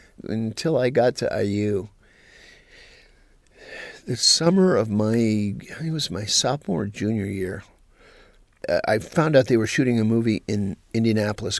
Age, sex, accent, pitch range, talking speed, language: 50-69, male, American, 100-120 Hz, 130 wpm, English